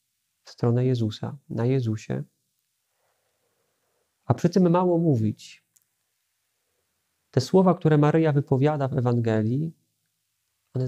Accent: native